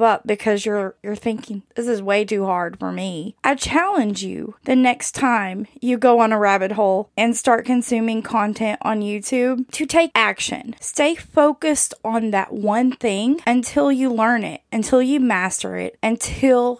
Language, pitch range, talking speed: English, 210-255 Hz, 170 wpm